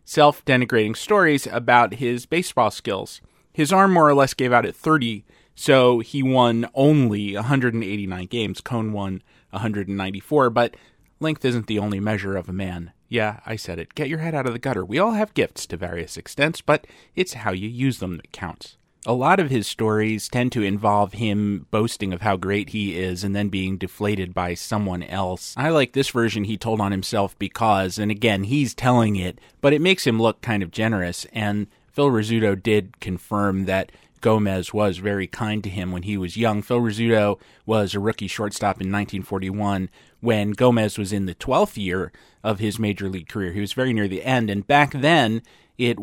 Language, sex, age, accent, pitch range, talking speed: English, male, 30-49, American, 100-120 Hz, 195 wpm